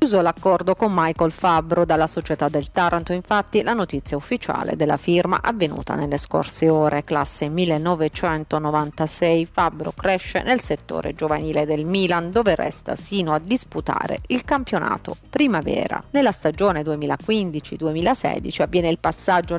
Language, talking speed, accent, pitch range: Italian, 130 wpm, native, 155-200 Hz